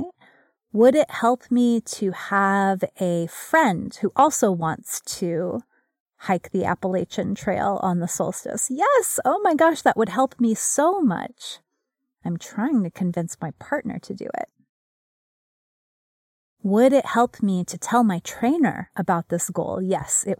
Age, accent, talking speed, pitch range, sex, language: 30-49, American, 150 wpm, 185-250 Hz, female, English